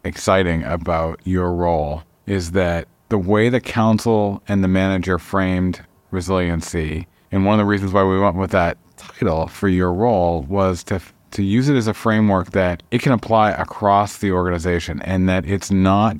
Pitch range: 90-105 Hz